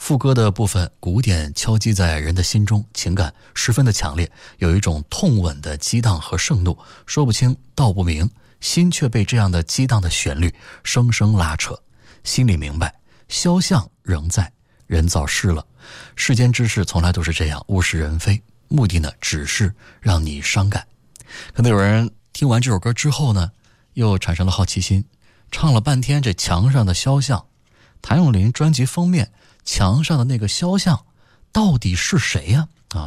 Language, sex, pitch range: Chinese, male, 90-125 Hz